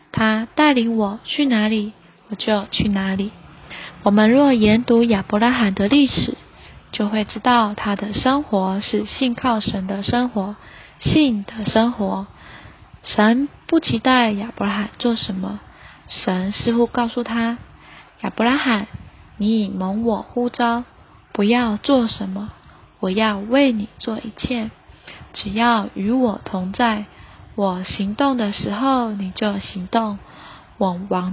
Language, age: Chinese, 10-29